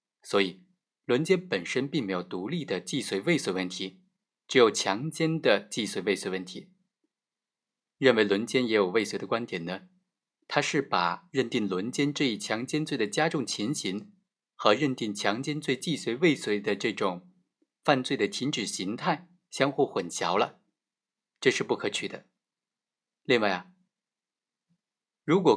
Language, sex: Chinese, male